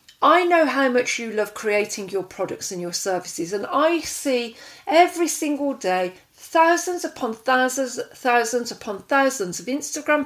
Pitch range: 200-275 Hz